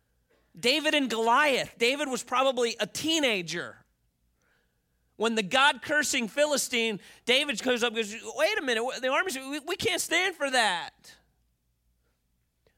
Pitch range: 220-300 Hz